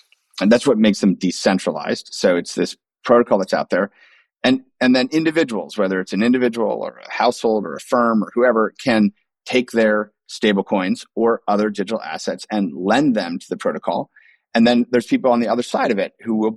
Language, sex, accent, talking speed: English, male, American, 205 wpm